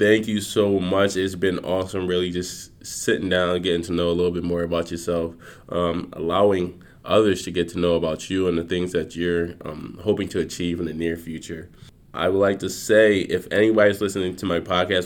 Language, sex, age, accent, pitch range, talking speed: English, male, 20-39, American, 90-105 Hz, 210 wpm